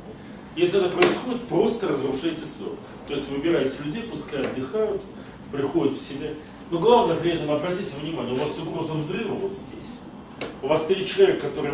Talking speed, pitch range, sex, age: 170 wpm, 130-170 Hz, male, 40-59